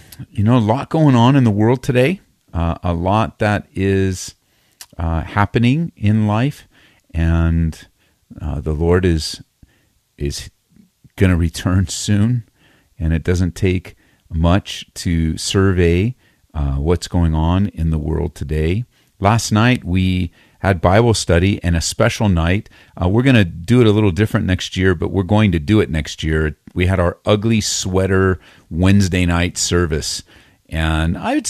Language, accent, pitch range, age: English, American, 85-110 Hz, 40-59